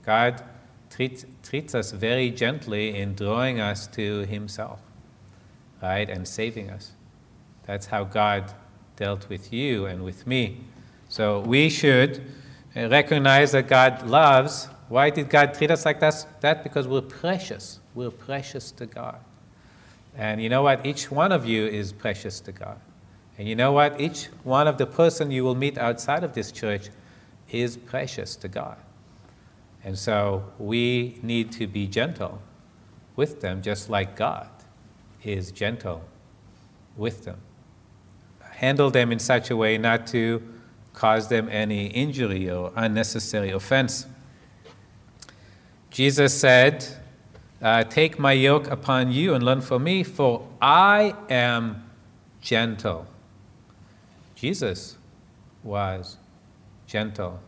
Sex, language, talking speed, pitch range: male, English, 135 wpm, 105-130 Hz